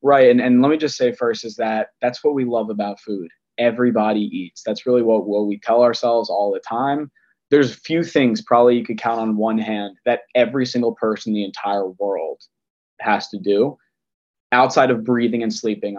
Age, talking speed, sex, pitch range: 20-39, 205 wpm, male, 105-120 Hz